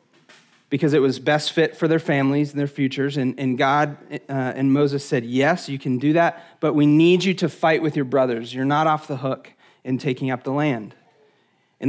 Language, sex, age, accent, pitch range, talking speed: English, male, 30-49, American, 135-160 Hz, 215 wpm